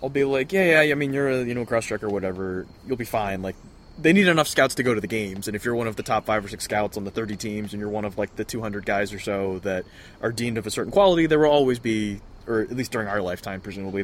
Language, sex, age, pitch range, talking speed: English, male, 20-39, 100-115 Hz, 295 wpm